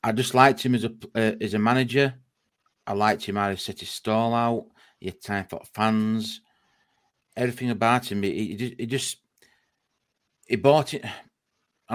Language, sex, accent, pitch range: English, male, British, 95-115 Hz